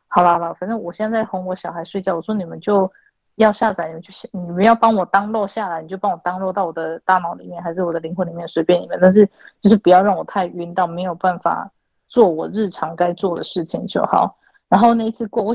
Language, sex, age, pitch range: Chinese, female, 20-39, 170-210 Hz